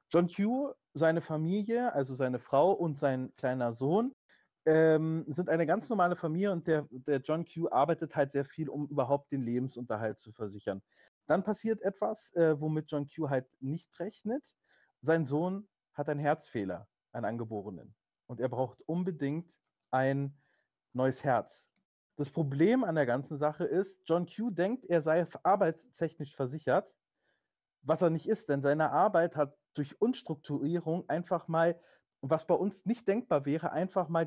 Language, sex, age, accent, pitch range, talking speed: German, male, 30-49, German, 140-190 Hz, 160 wpm